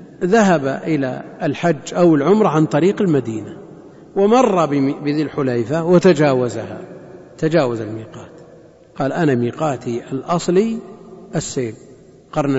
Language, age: Arabic, 50-69